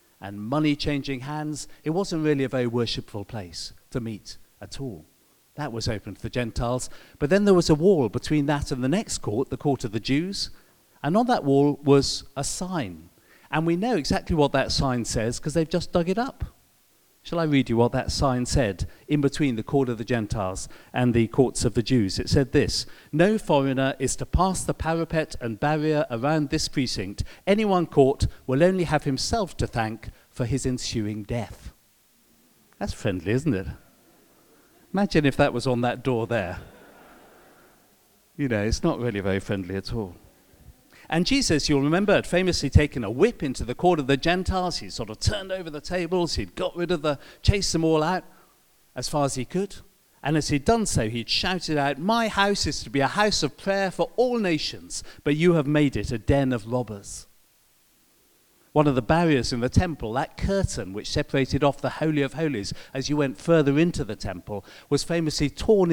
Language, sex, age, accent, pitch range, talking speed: English, male, 50-69, British, 120-160 Hz, 200 wpm